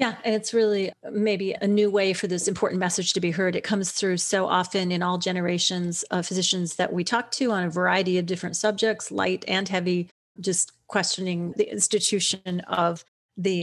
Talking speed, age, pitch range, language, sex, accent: 195 wpm, 30-49, 180-215 Hz, English, female, American